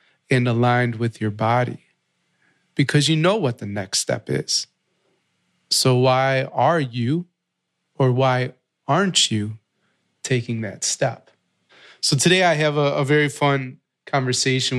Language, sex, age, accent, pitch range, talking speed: English, male, 20-39, American, 120-150 Hz, 135 wpm